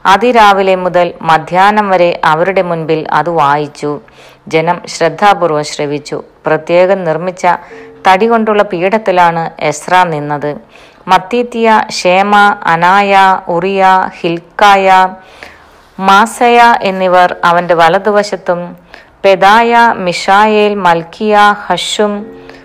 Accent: native